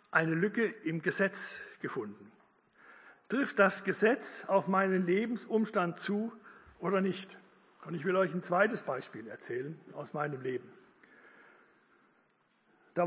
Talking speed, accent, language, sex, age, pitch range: 120 wpm, German, German, male, 60-79, 185-220 Hz